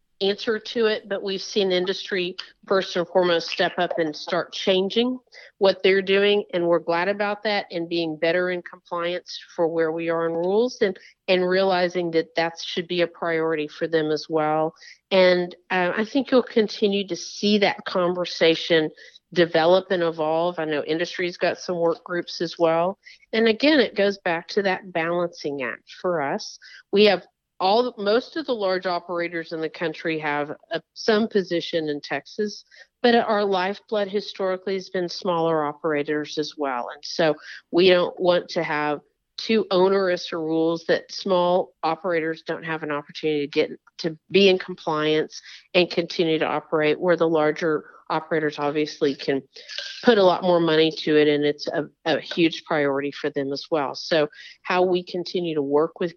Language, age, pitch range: English, 50-69, 160-190 Hz